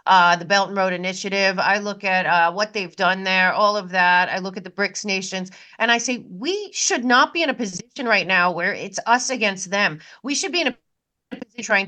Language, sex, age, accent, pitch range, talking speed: English, female, 40-59, American, 195-255 Hz, 235 wpm